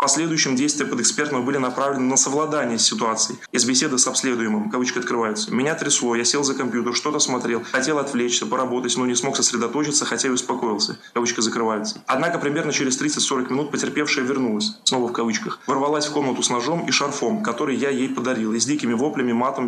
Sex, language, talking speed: male, Russian, 190 wpm